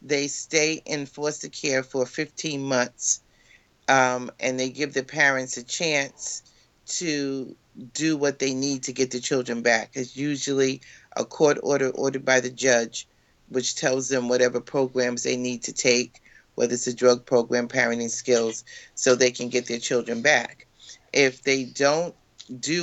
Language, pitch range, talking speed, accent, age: English, 130-150 Hz, 165 wpm, American, 40-59